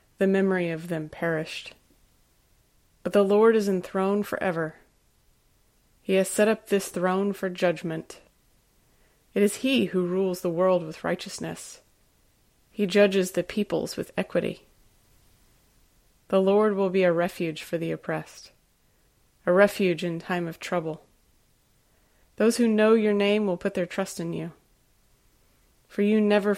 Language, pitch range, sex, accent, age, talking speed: English, 170-205 Hz, female, American, 30-49, 140 wpm